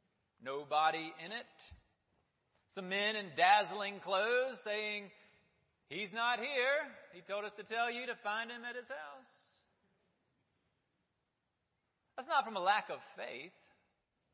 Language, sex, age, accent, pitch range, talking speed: English, male, 40-59, American, 145-200 Hz, 130 wpm